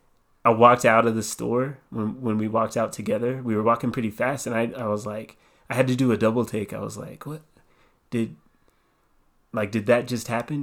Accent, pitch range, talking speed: American, 105-120 Hz, 220 wpm